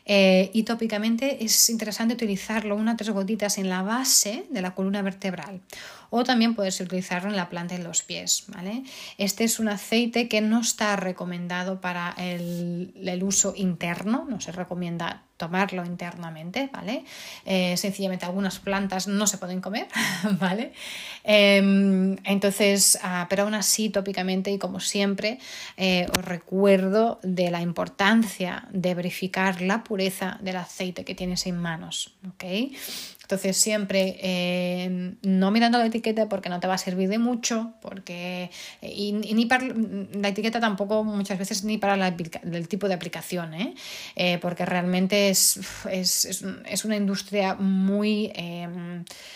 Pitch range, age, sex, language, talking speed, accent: 185-210 Hz, 30-49, female, Spanish, 155 wpm, Spanish